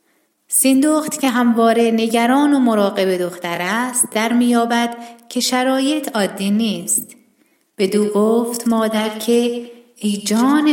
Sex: female